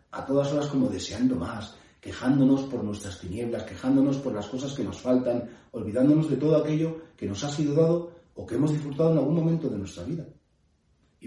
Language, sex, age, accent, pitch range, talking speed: Spanish, male, 40-59, Spanish, 105-145 Hz, 195 wpm